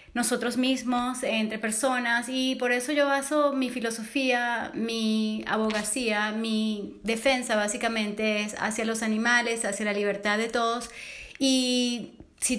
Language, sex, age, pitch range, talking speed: English, female, 30-49, 220-255 Hz, 130 wpm